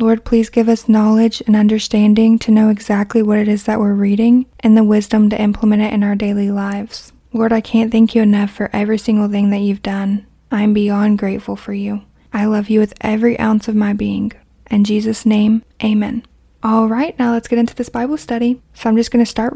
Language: English